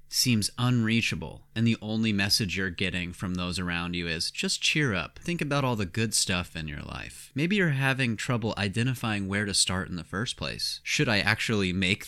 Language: English